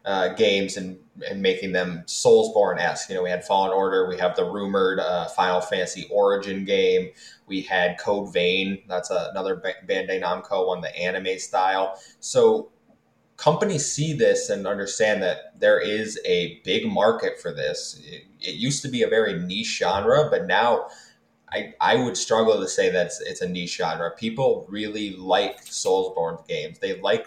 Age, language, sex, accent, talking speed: 20-39, English, male, American, 175 wpm